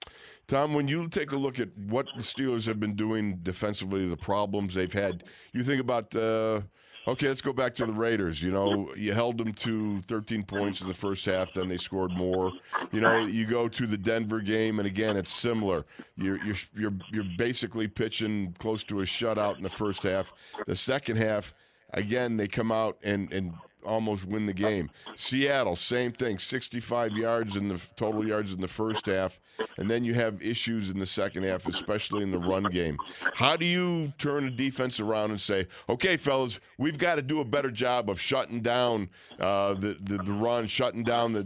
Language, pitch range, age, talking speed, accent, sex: English, 100-120 Hz, 50-69, 200 wpm, American, male